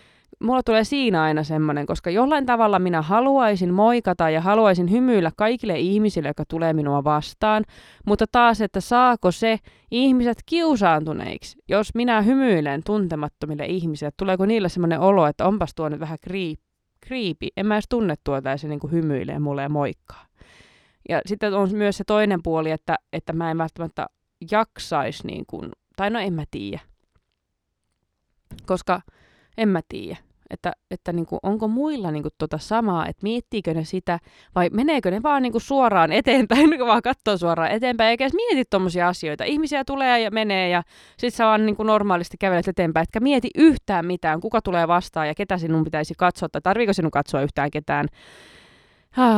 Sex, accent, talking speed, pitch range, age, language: female, native, 170 wpm, 160-225 Hz, 20-39, Finnish